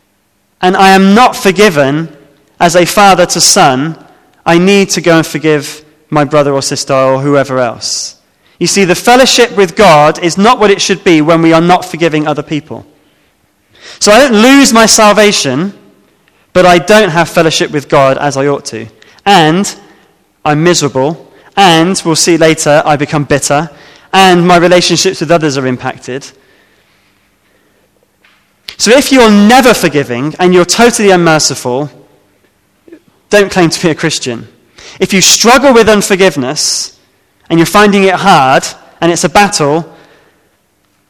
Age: 20-39